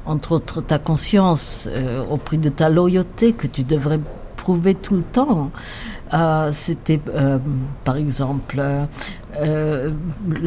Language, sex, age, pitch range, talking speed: French, female, 60-79, 140-165 Hz, 130 wpm